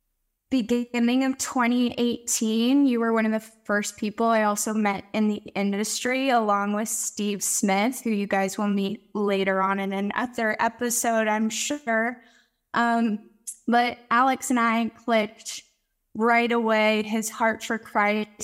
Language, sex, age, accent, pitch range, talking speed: English, female, 10-29, American, 210-240 Hz, 145 wpm